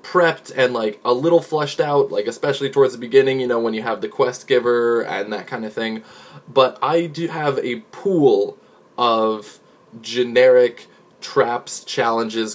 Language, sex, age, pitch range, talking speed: English, male, 20-39, 115-165 Hz, 165 wpm